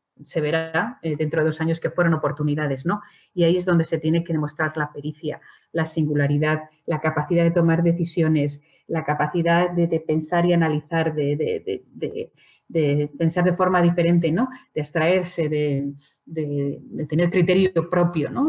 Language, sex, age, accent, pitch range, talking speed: Spanish, female, 30-49, Spanish, 150-175 Hz, 170 wpm